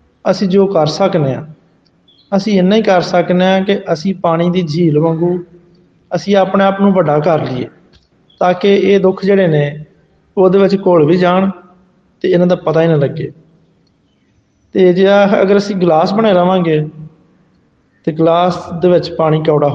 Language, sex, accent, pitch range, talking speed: Hindi, male, native, 160-200 Hz, 130 wpm